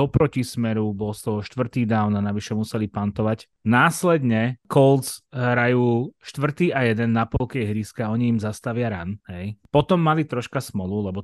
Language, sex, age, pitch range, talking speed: Slovak, male, 20-39, 105-125 Hz, 160 wpm